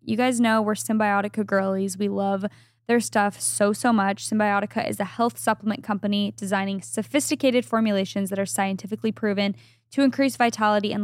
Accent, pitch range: American, 195-225 Hz